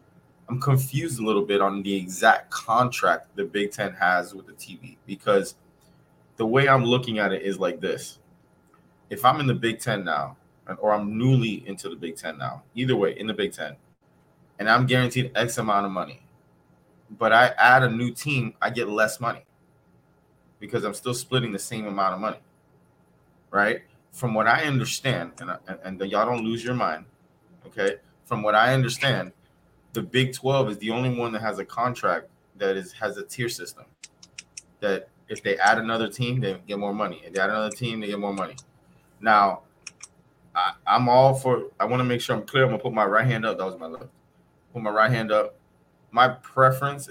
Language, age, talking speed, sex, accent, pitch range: English, 20-39, 200 wpm, male, American, 100-125 Hz